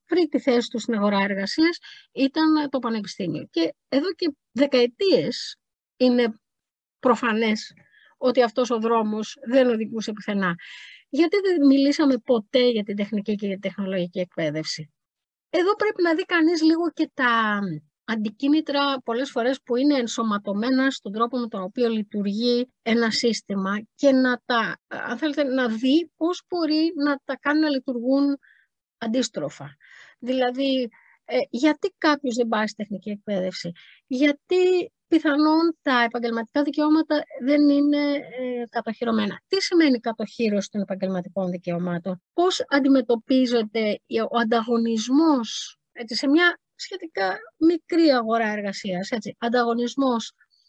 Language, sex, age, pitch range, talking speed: Greek, female, 30-49, 220-290 Hz, 125 wpm